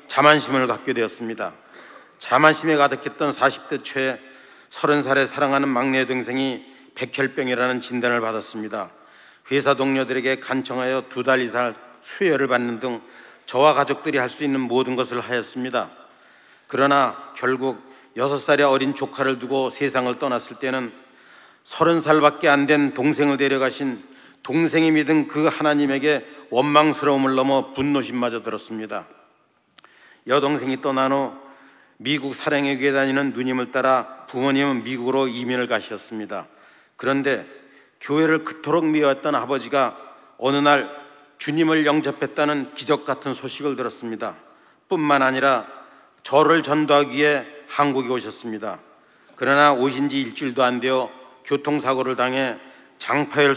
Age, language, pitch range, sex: 40-59, Korean, 130-145 Hz, male